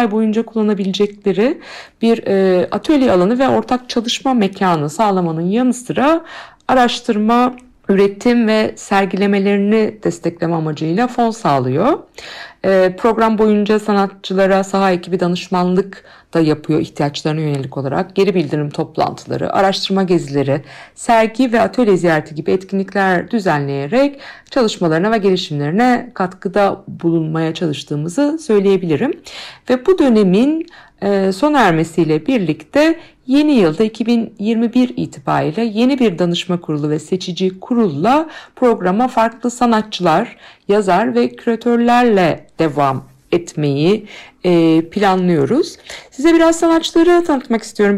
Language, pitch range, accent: Turkish, 170-235 Hz, native